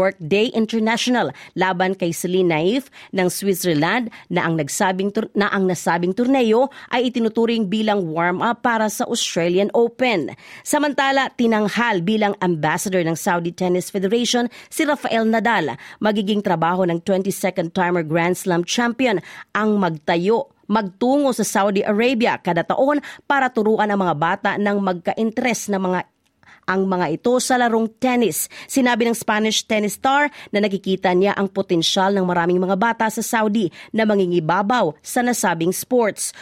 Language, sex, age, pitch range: Filipino, female, 40-59, 180-235 Hz